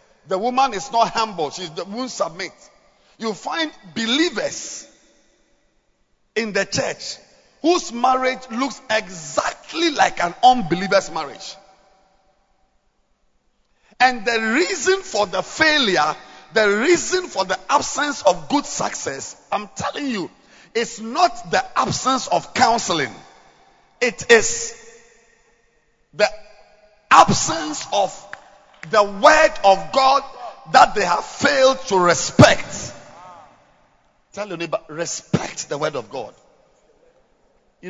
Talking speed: 110 wpm